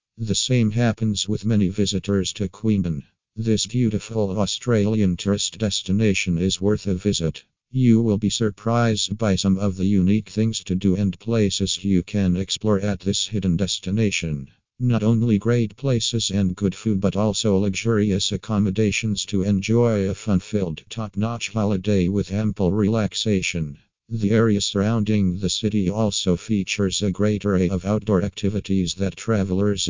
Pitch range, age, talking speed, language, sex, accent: 95-110 Hz, 50-69, 145 wpm, English, male, American